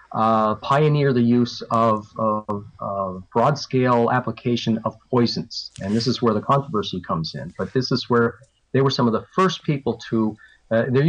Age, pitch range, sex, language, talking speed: 40-59, 110-130 Hz, male, English, 180 wpm